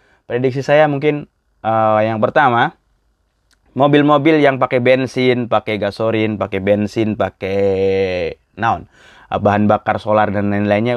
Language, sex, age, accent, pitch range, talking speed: Indonesian, male, 20-39, native, 100-135 Hz, 115 wpm